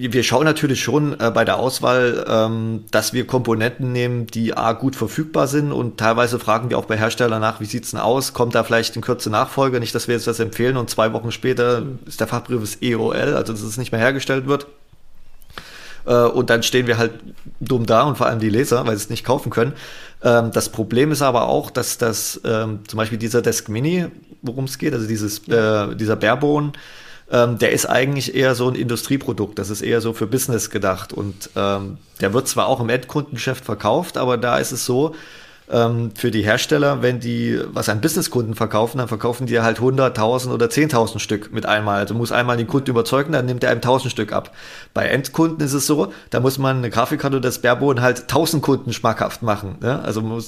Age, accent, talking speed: 20-39, German, 215 wpm